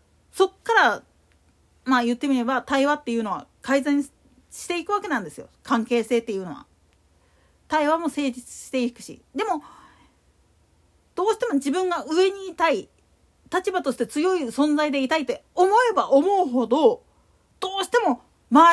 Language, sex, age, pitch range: Japanese, female, 40-59, 240-360 Hz